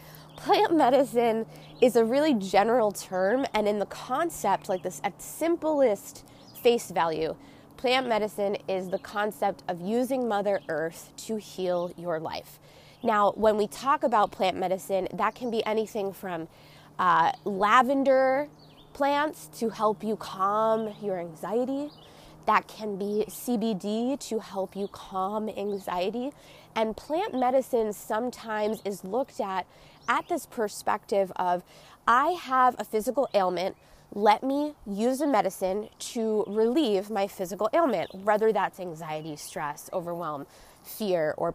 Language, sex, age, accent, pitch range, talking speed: English, female, 20-39, American, 190-245 Hz, 135 wpm